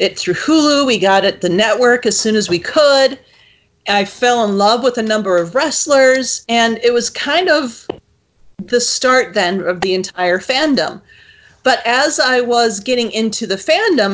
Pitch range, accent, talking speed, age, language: 205-260 Hz, American, 180 wpm, 40-59, English